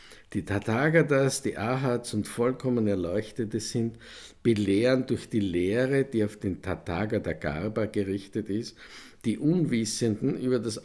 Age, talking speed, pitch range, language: 50-69, 125 wpm, 105-130 Hz, German